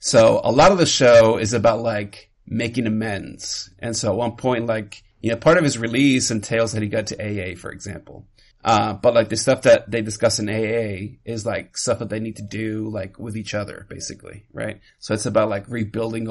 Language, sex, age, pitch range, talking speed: English, male, 30-49, 110-125 Hz, 220 wpm